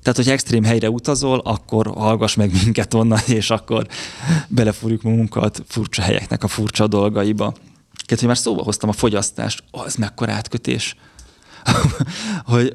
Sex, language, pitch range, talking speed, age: male, Hungarian, 110-120 Hz, 145 wpm, 20-39